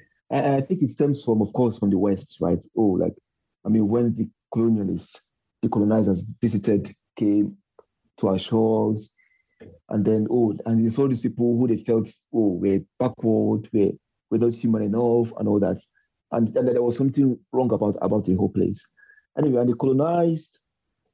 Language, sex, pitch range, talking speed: English, male, 105-120 Hz, 180 wpm